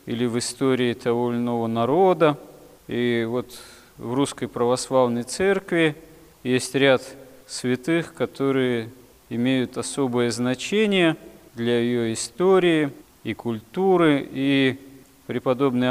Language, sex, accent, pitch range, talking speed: Russian, male, native, 115-140 Hz, 100 wpm